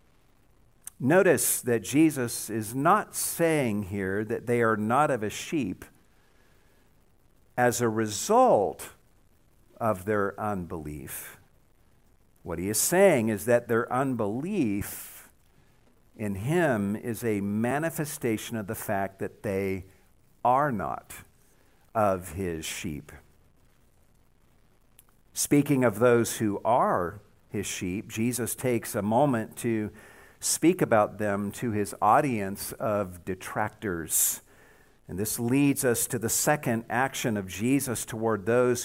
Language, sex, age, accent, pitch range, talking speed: English, male, 50-69, American, 100-125 Hz, 115 wpm